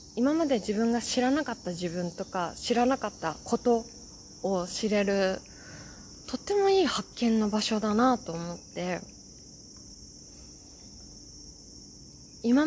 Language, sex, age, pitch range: Japanese, female, 20-39, 190-255 Hz